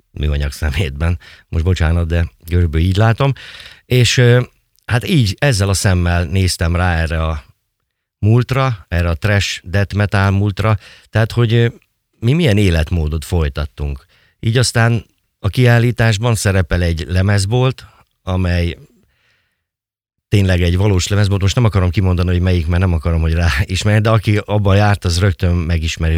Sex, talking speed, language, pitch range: male, 140 wpm, Hungarian, 85-110 Hz